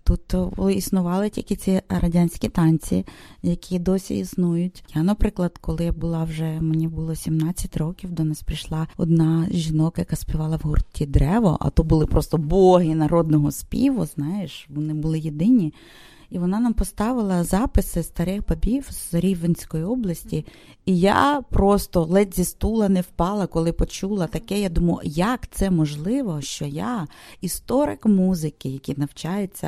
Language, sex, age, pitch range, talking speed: English, female, 30-49, 160-195 Hz, 145 wpm